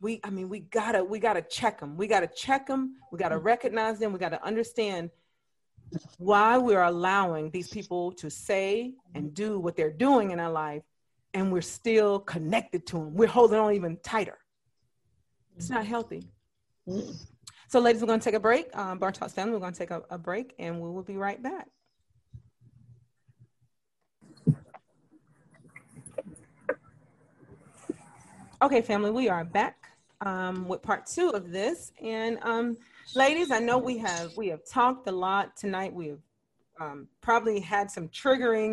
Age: 40-59